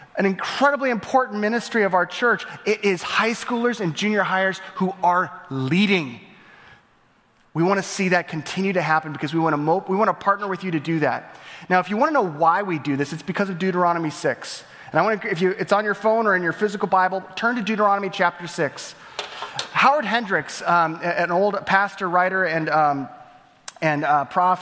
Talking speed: 205 wpm